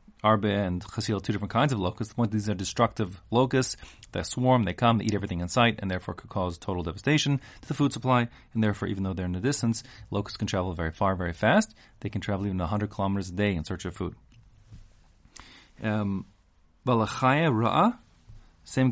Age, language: 30-49, English